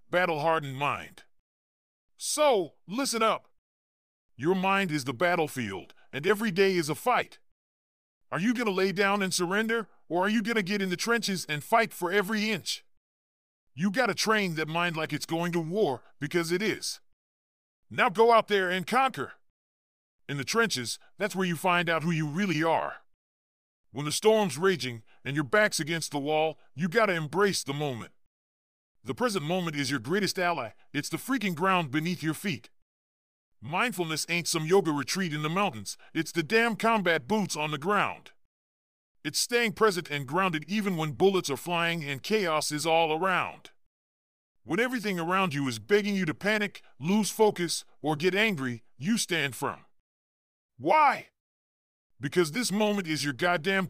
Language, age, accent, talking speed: English, 40-59, American, 175 wpm